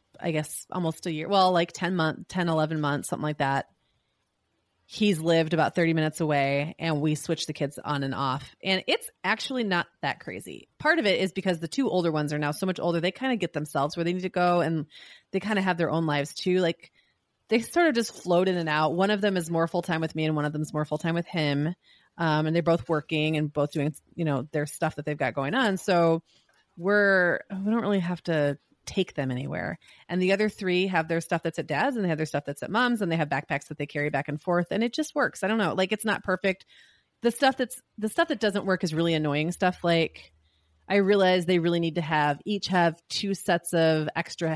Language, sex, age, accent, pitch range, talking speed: English, female, 30-49, American, 150-185 Hz, 250 wpm